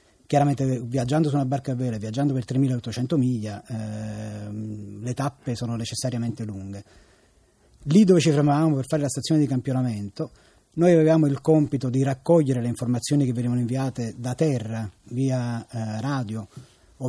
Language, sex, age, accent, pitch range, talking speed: Italian, male, 30-49, native, 115-140 Hz, 155 wpm